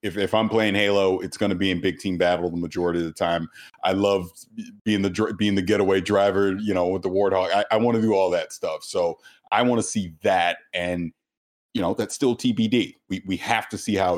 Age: 30-49